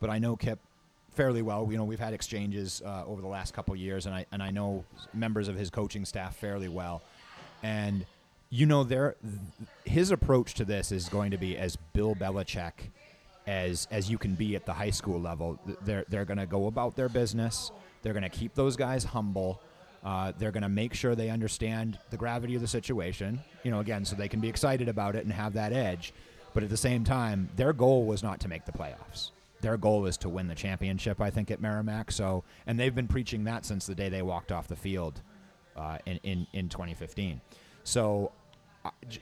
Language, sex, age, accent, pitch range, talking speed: English, male, 30-49, American, 95-115 Hz, 220 wpm